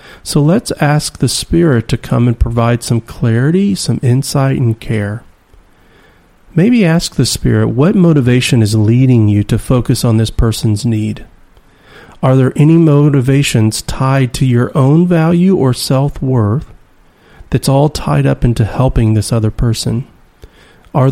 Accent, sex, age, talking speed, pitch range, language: American, male, 40-59, 145 wpm, 110-140 Hz, English